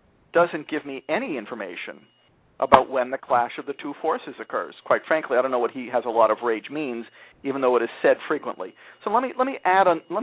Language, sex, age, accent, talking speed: English, male, 50-69, American, 240 wpm